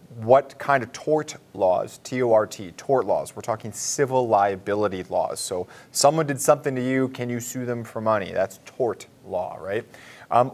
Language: English